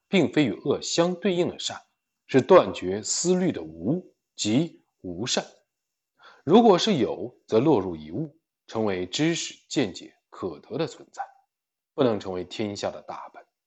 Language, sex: Chinese, male